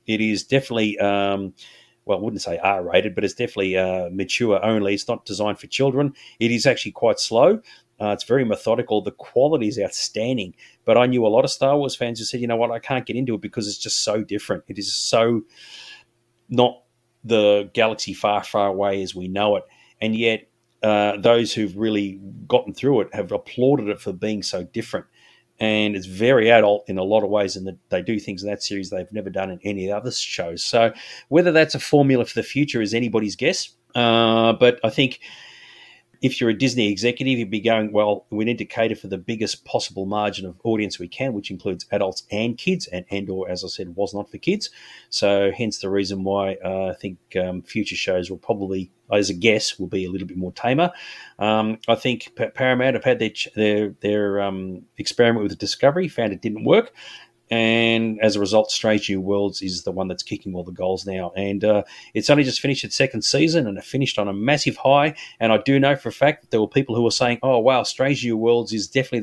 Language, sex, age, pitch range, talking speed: English, male, 40-59, 100-120 Hz, 220 wpm